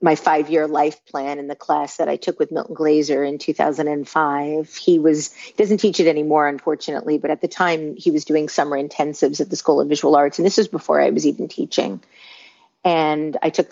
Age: 40-59